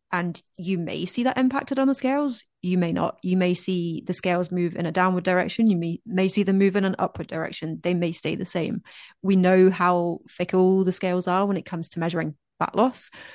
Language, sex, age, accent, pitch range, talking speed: English, female, 30-49, British, 175-205 Hz, 230 wpm